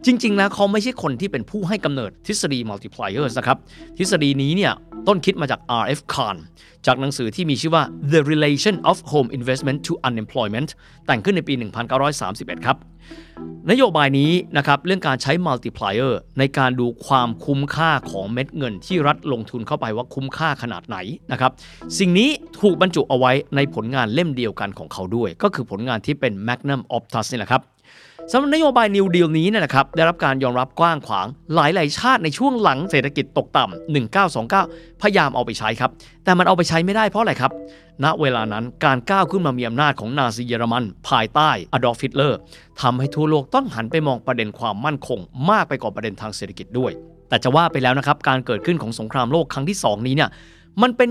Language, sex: Thai, male